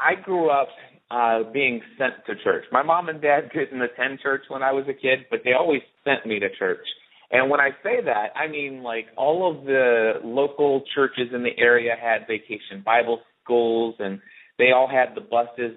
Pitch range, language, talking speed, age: 115-150 Hz, English, 200 wpm, 30-49